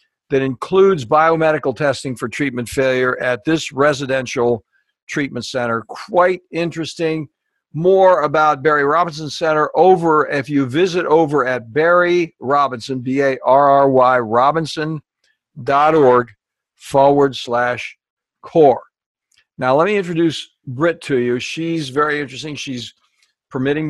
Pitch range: 130-165 Hz